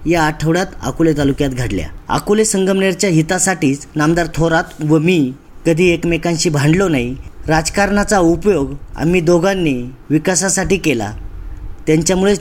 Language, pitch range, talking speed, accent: Marathi, 155-185 Hz, 110 wpm, native